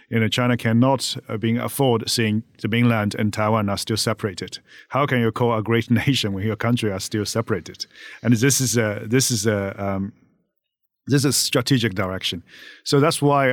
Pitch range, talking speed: 100-120 Hz, 185 wpm